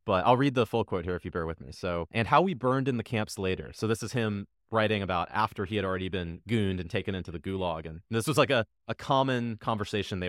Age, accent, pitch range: 30-49, American, 90-120 Hz